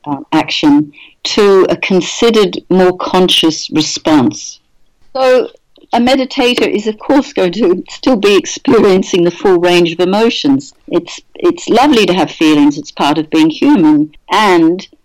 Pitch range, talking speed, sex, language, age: 160-255 Hz, 145 wpm, female, English, 60-79